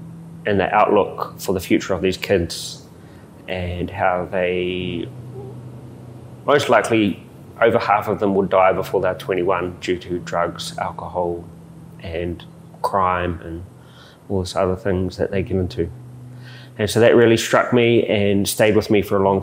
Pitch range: 90-115 Hz